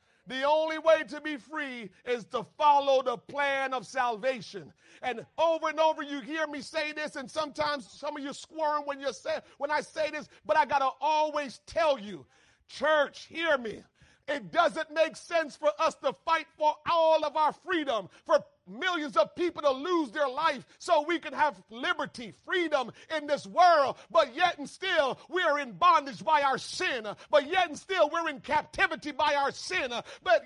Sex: male